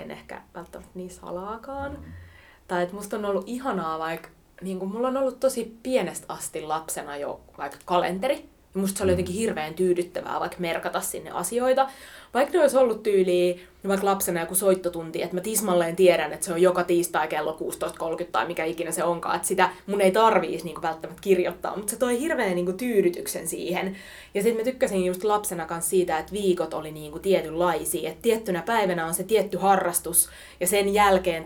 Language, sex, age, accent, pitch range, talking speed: Finnish, female, 20-39, native, 170-200 Hz, 190 wpm